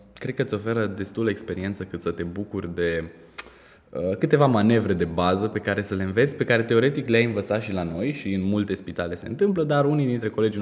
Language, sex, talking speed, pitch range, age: Romanian, male, 220 wpm, 95-125 Hz, 20-39